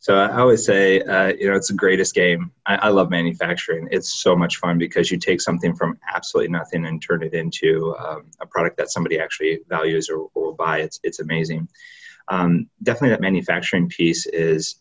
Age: 30-49